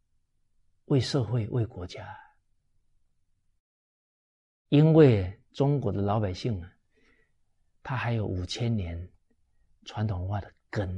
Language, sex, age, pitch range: Chinese, male, 50-69, 95-130 Hz